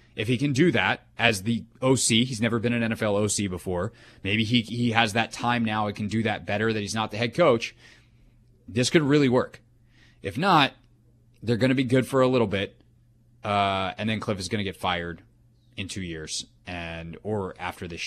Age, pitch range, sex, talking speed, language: 20-39, 100-120 Hz, male, 215 wpm, English